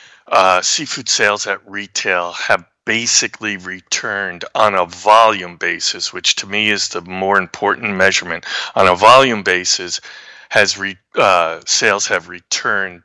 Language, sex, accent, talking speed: English, male, American, 140 wpm